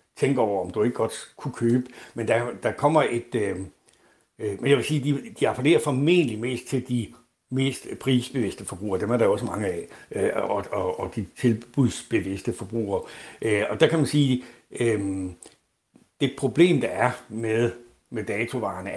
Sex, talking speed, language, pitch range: male, 180 wpm, Danish, 110-135 Hz